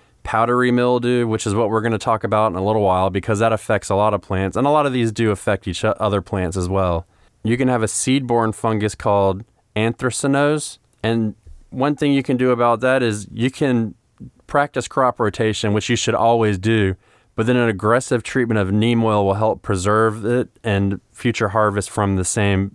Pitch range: 105-125 Hz